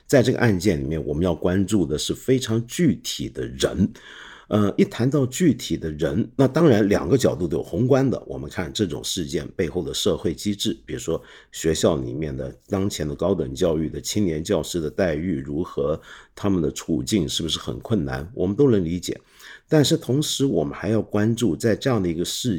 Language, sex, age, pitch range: Chinese, male, 50-69, 90-130 Hz